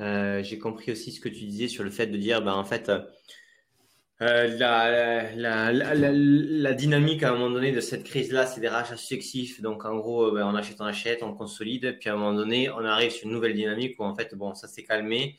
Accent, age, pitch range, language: French, 20-39, 105-120 Hz, French